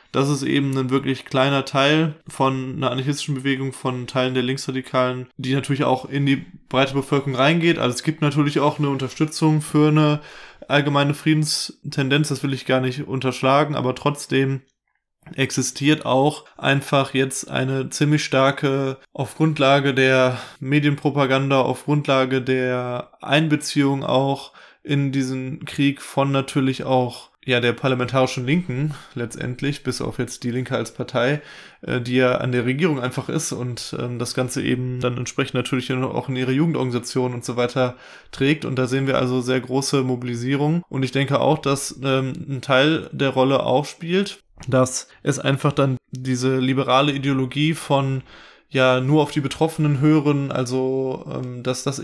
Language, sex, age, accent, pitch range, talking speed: German, male, 20-39, German, 130-145 Hz, 155 wpm